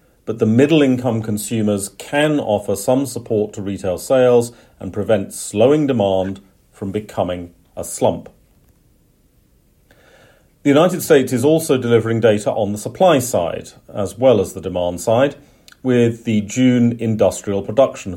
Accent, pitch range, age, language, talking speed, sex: British, 95-120 Hz, 40-59, English, 135 wpm, male